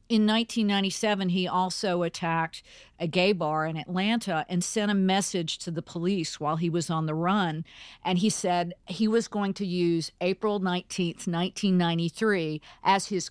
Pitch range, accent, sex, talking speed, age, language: 170-200 Hz, American, female, 160 wpm, 50-69, English